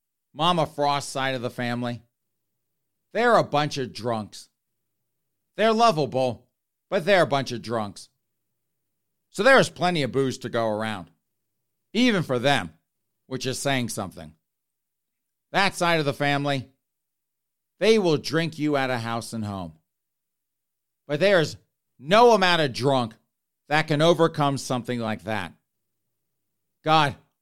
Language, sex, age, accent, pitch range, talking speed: English, male, 50-69, American, 115-145 Hz, 135 wpm